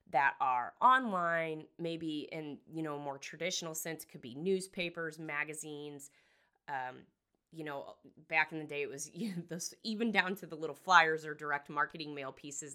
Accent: American